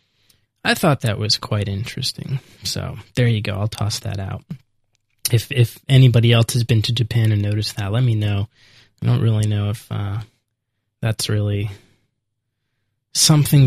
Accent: American